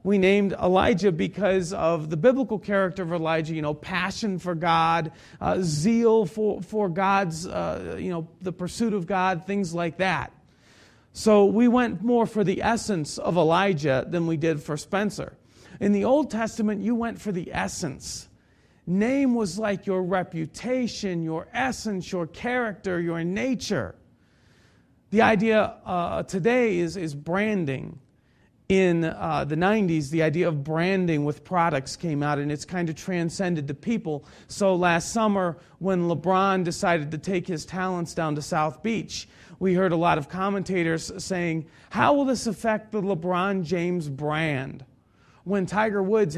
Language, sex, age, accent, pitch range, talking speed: English, male, 40-59, American, 165-210 Hz, 160 wpm